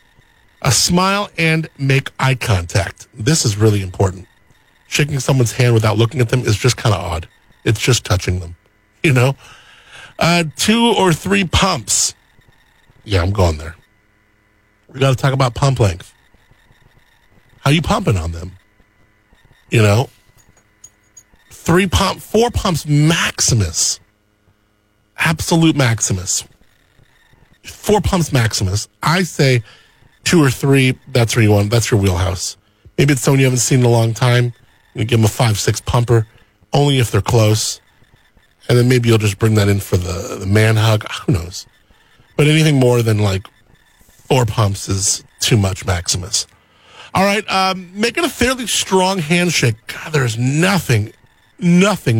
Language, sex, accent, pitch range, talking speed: English, male, American, 105-140 Hz, 150 wpm